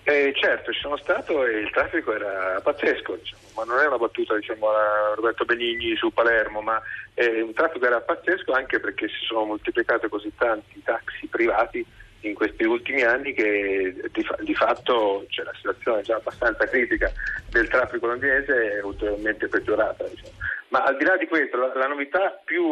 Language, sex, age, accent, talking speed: Italian, male, 40-59, native, 170 wpm